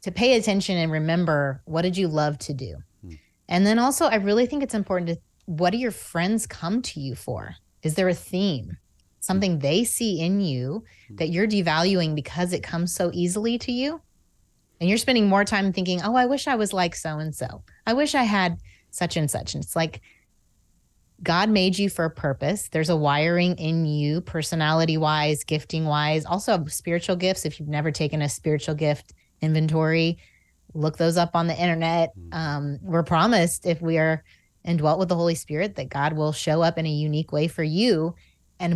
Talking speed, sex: 190 wpm, female